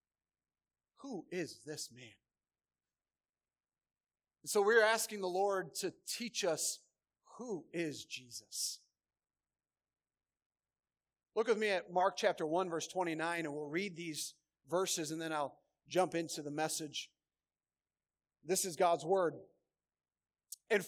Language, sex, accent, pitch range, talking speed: English, male, American, 155-195 Hz, 120 wpm